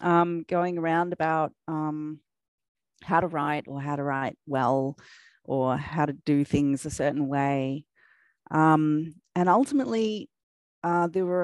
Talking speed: 140 wpm